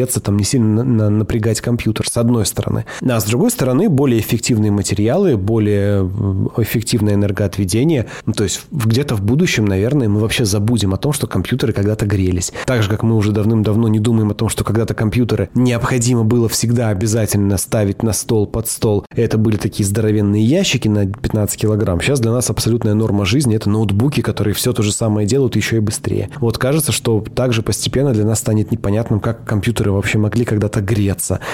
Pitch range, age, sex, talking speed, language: 105-125 Hz, 20-39, male, 185 wpm, Russian